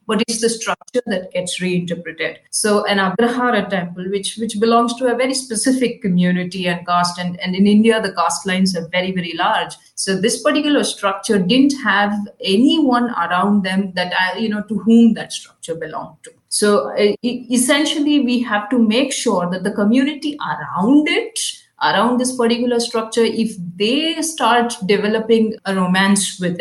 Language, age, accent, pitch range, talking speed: English, 30-49, Indian, 185-240 Hz, 165 wpm